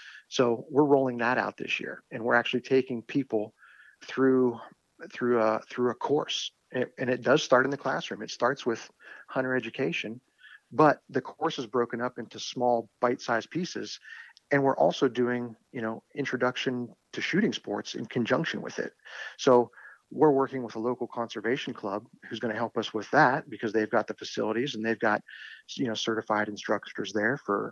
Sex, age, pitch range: male, 40-59, 115-135 Hz